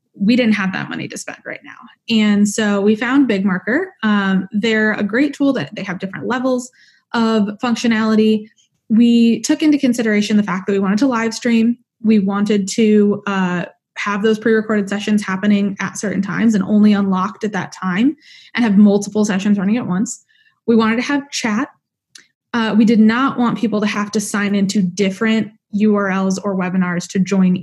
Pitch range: 195-235 Hz